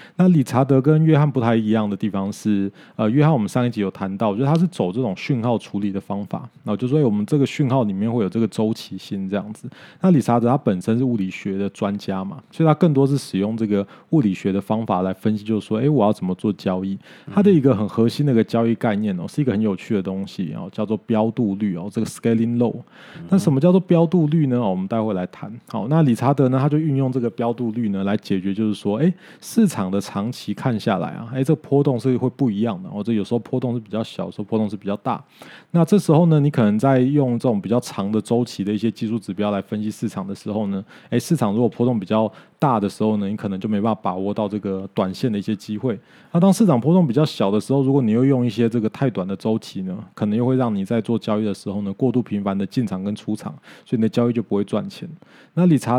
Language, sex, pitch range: Chinese, male, 105-135 Hz